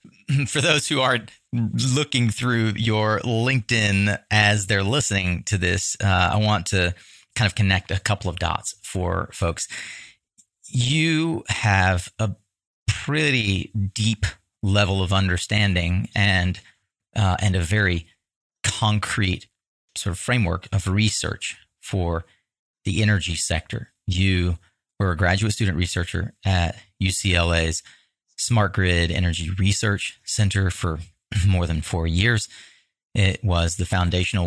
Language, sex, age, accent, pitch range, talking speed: English, male, 30-49, American, 90-110 Hz, 125 wpm